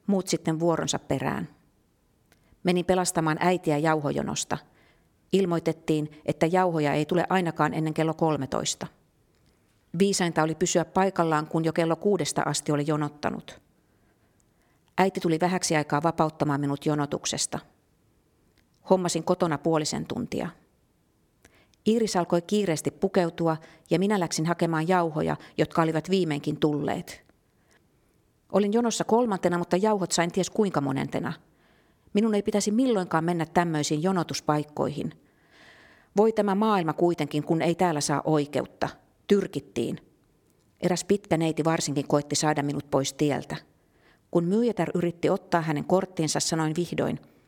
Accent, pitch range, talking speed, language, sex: native, 150-180 Hz, 120 wpm, Finnish, female